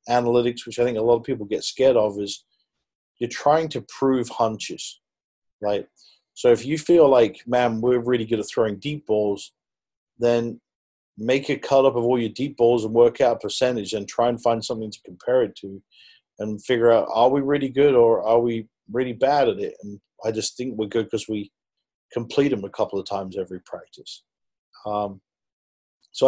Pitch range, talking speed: 110-125 Hz, 200 wpm